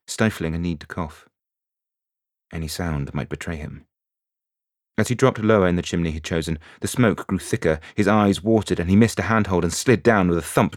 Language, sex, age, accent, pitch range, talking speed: English, male, 30-49, British, 80-105 Hz, 210 wpm